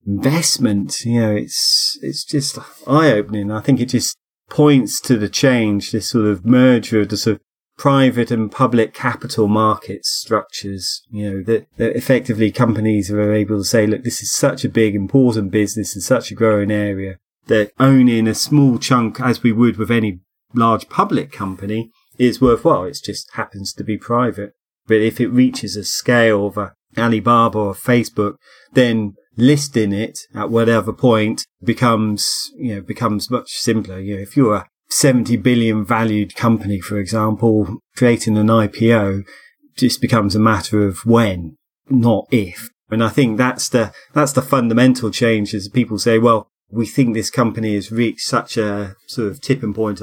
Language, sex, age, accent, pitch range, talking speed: English, male, 30-49, British, 105-120 Hz, 175 wpm